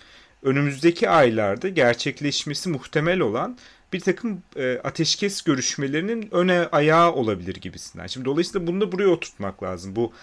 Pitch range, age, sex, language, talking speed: 110-170 Hz, 40-59, male, Turkish, 125 wpm